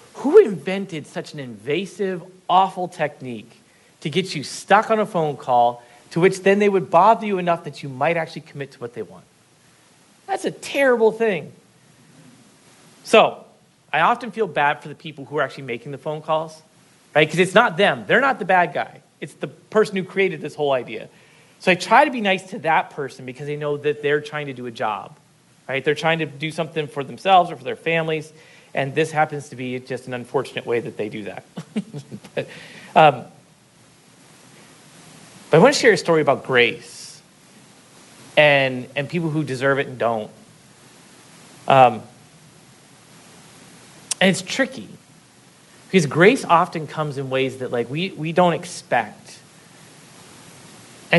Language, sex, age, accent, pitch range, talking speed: English, male, 40-59, American, 140-185 Hz, 175 wpm